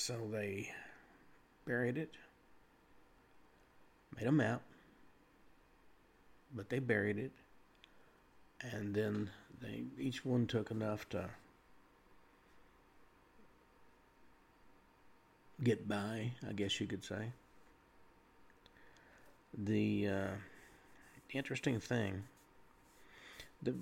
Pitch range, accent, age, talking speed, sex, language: 100-115 Hz, American, 50-69, 80 wpm, male, English